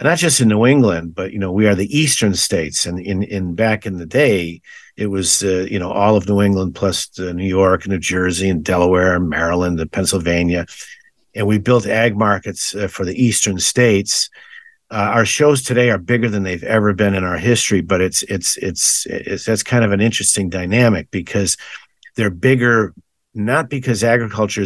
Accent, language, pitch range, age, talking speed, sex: American, English, 90-110 Hz, 50-69, 200 wpm, male